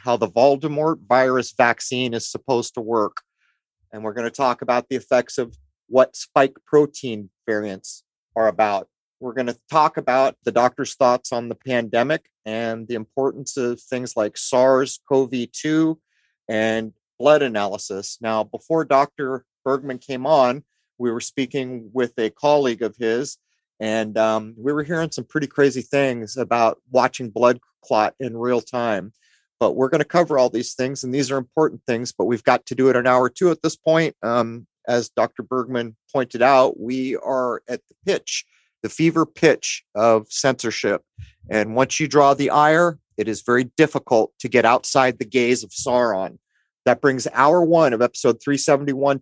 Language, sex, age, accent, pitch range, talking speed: English, male, 40-59, American, 115-140 Hz, 170 wpm